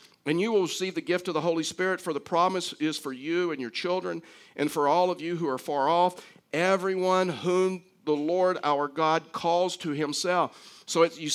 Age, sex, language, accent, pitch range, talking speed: 50-69, male, English, American, 155-180 Hz, 205 wpm